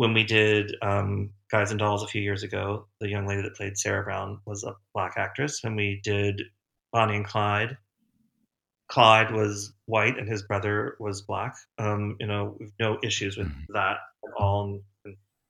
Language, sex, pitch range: English, male, 100-115 Hz